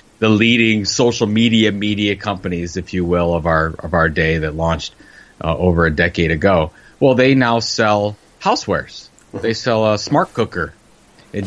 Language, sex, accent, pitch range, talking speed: English, male, American, 95-120 Hz, 165 wpm